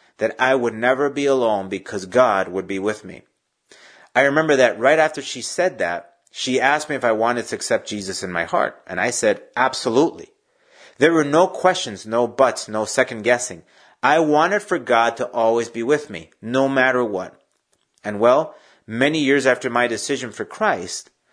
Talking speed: 185 wpm